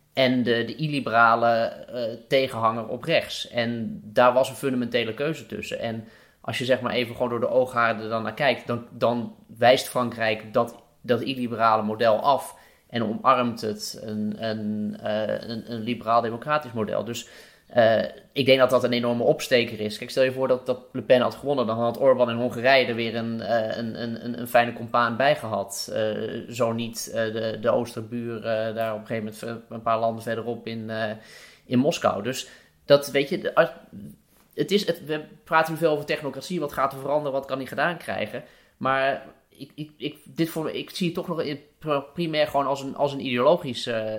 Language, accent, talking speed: Dutch, Dutch, 195 wpm